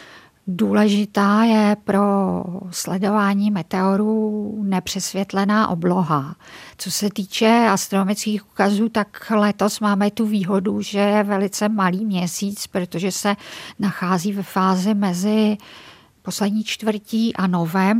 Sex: female